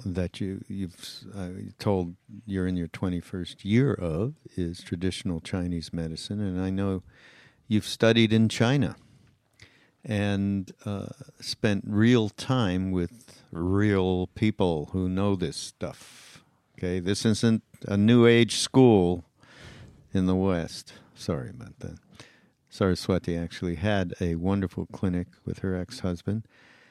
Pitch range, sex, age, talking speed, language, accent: 90-110 Hz, male, 60-79, 125 wpm, English, American